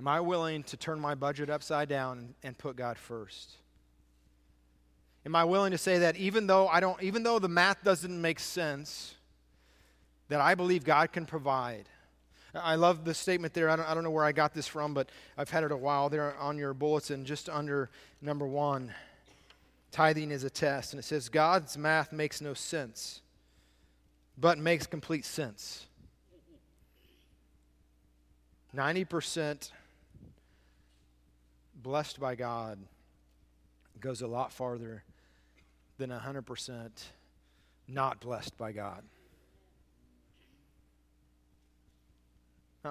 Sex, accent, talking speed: male, American, 135 wpm